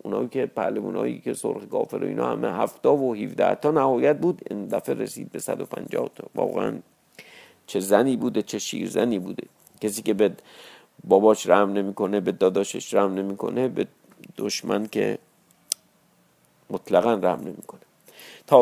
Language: Persian